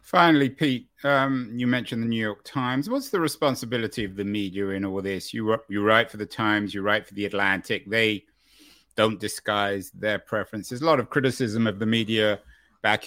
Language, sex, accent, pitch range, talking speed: English, male, British, 100-125 Hz, 195 wpm